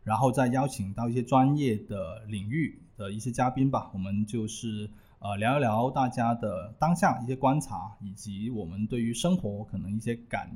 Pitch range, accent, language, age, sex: 105-130 Hz, native, Chinese, 20-39, male